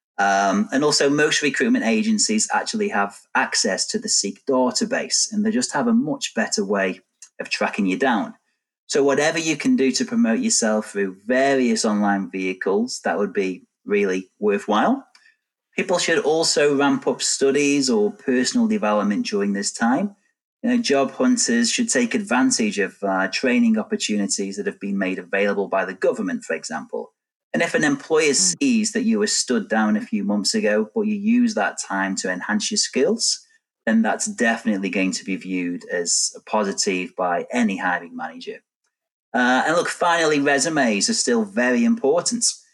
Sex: male